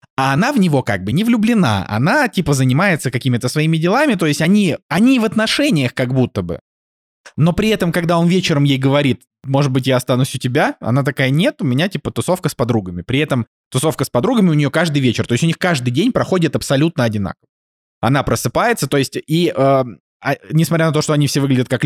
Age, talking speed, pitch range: 20-39, 215 wpm, 120-160 Hz